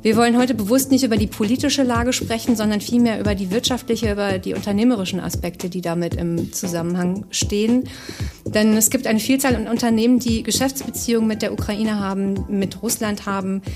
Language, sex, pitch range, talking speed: German, female, 200-235 Hz, 175 wpm